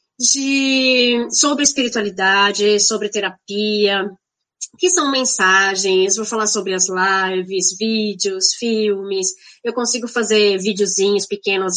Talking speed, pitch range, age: 95 wpm, 195-240 Hz, 20-39